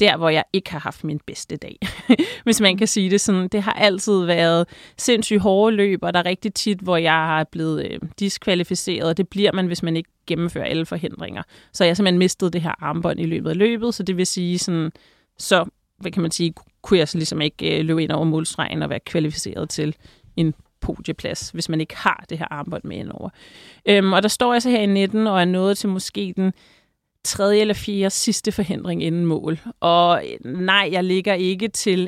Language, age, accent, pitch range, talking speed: English, 30-49, Danish, 175-205 Hz, 220 wpm